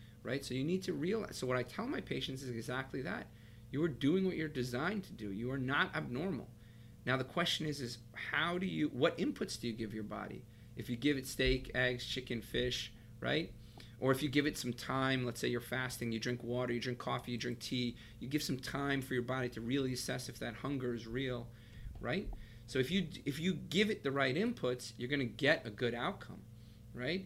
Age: 40-59